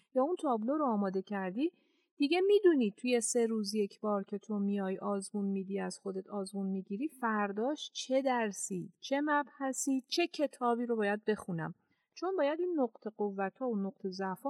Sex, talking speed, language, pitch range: female, 170 wpm, Persian, 185-255 Hz